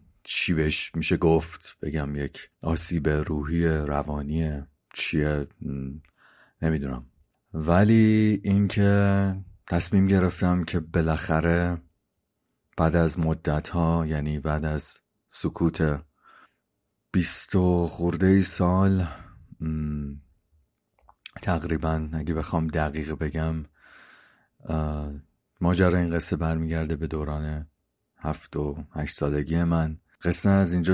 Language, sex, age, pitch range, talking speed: Persian, male, 40-59, 75-85 Hz, 90 wpm